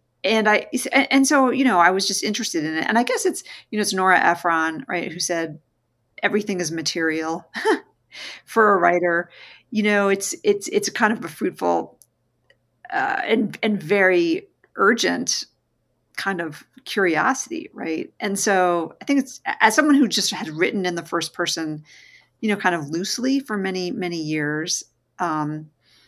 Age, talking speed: 40-59, 170 wpm